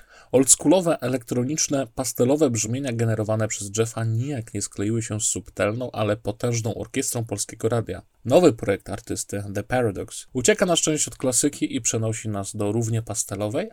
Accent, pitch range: native, 110-135 Hz